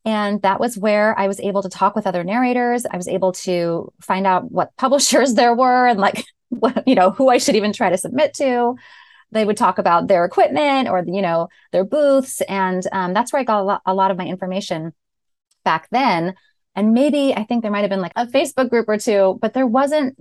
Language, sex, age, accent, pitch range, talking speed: English, female, 30-49, American, 185-230 Hz, 230 wpm